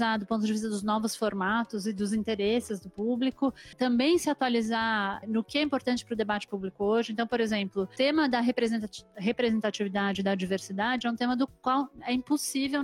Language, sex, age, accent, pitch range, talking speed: Portuguese, female, 30-49, Brazilian, 220-260 Hz, 180 wpm